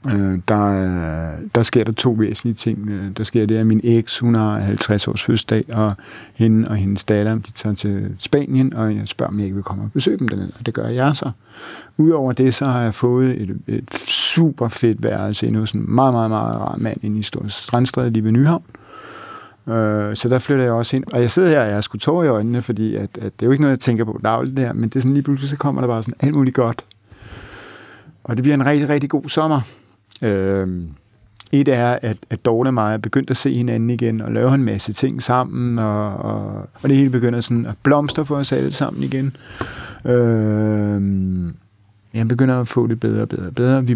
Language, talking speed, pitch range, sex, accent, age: Danish, 230 wpm, 105-125 Hz, male, native, 60-79